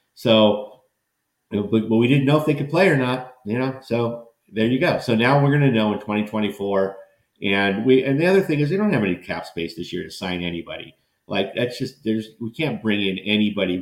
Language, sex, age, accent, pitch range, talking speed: English, male, 50-69, American, 90-110 Hz, 225 wpm